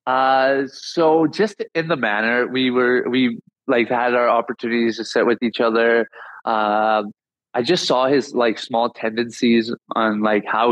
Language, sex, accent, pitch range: English, male, American, 115-135 Hz